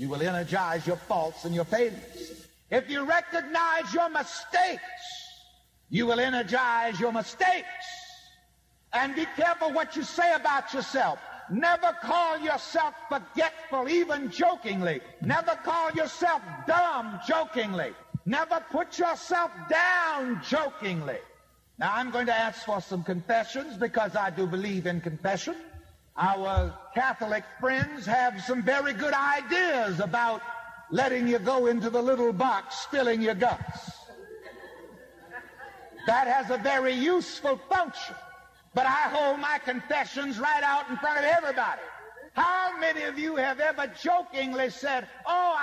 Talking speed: 135 wpm